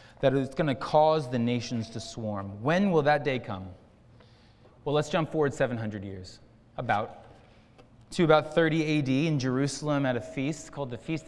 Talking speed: 175 wpm